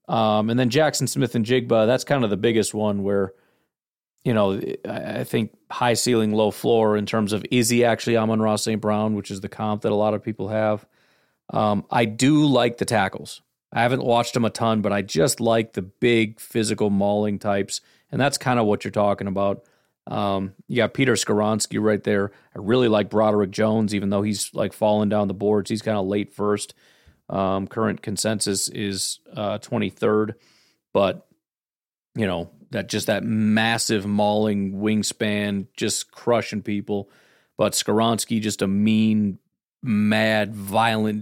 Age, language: 40-59, English